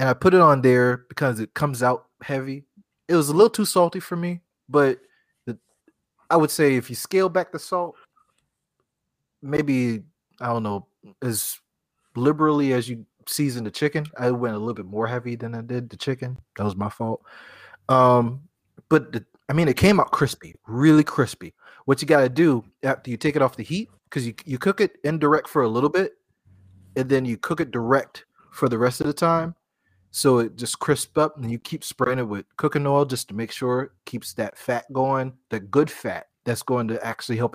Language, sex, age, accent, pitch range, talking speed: English, male, 20-39, American, 115-145 Hz, 210 wpm